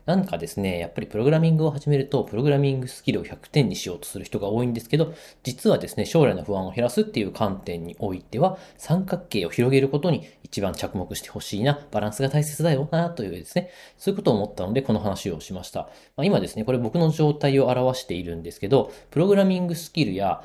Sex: male